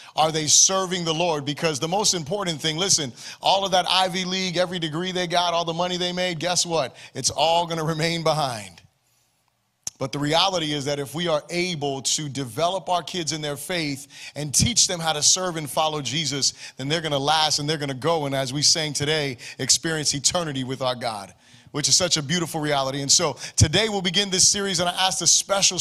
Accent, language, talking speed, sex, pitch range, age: American, English, 225 wpm, male, 150-180 Hz, 30-49